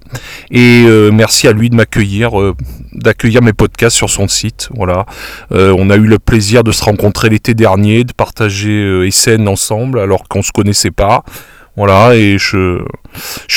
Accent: French